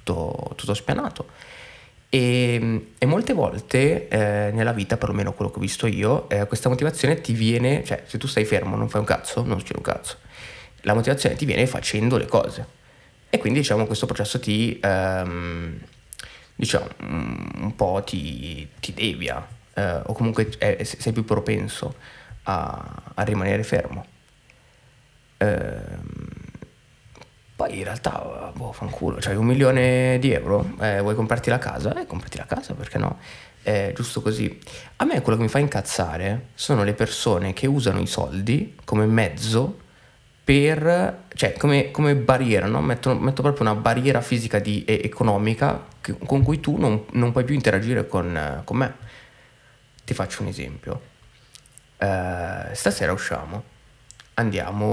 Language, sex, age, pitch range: Italian, male, 20-39, 100-130 Hz